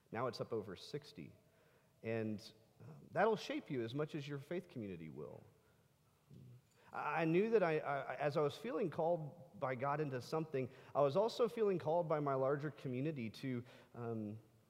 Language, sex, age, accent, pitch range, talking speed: English, male, 40-59, American, 120-155 Hz, 170 wpm